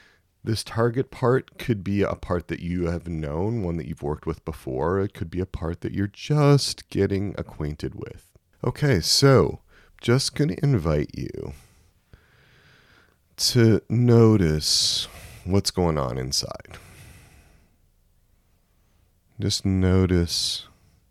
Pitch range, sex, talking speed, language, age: 80-100 Hz, male, 120 wpm, English, 40-59